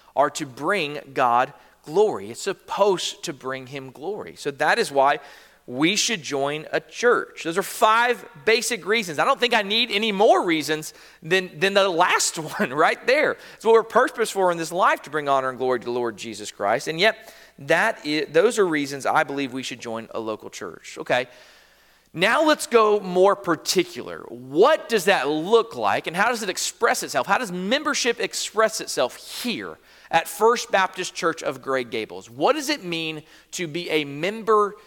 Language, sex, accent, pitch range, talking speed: English, male, American, 150-220 Hz, 190 wpm